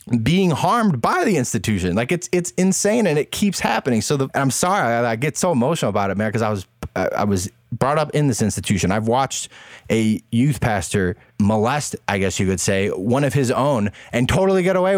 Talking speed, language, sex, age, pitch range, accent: 210 wpm, English, male, 20-39, 100-140 Hz, American